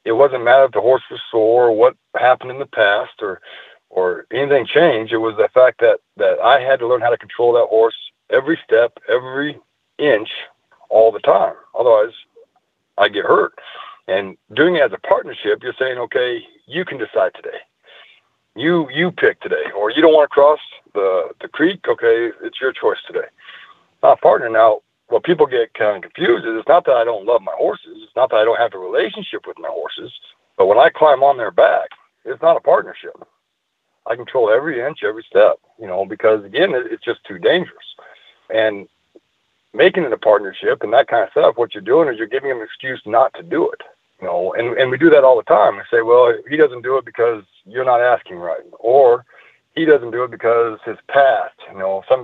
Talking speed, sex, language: 210 wpm, male, English